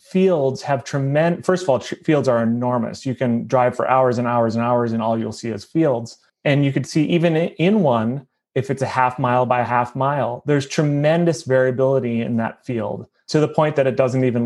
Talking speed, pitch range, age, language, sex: 215 wpm, 120-140 Hz, 30-49, English, male